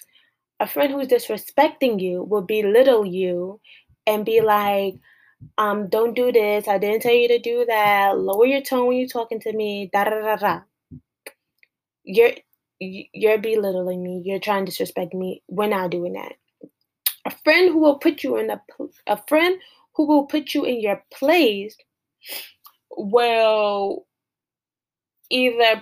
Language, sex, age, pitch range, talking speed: English, female, 20-39, 195-245 Hz, 155 wpm